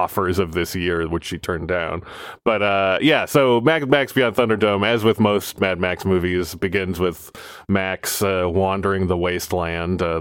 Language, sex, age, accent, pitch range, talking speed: English, male, 20-39, American, 90-110 Hz, 170 wpm